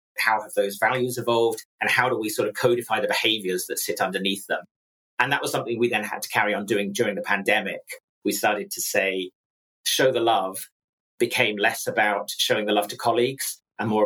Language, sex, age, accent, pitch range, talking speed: English, male, 40-59, British, 115-175 Hz, 210 wpm